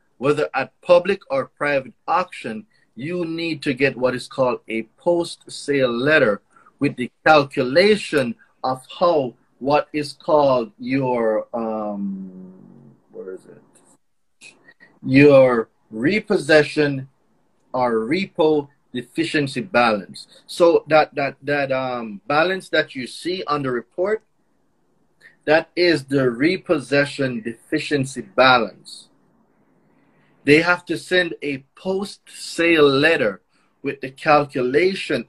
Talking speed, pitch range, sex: 110 wpm, 125-165 Hz, male